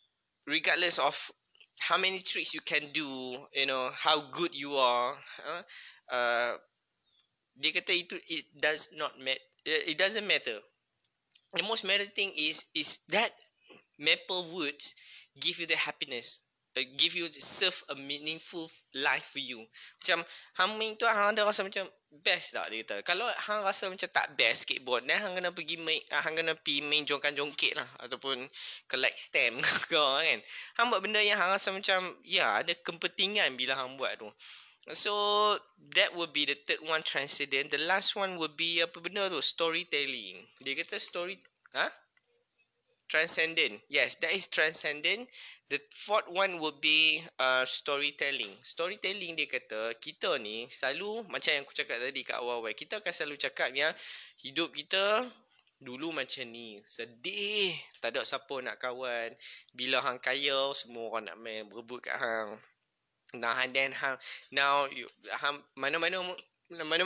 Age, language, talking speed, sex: 20-39, Malay, 155 wpm, male